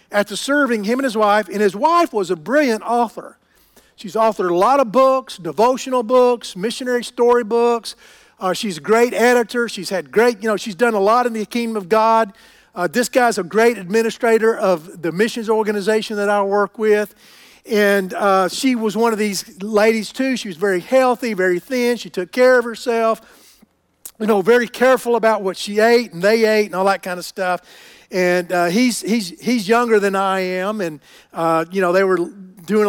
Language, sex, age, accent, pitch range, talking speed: English, male, 50-69, American, 195-245 Hz, 200 wpm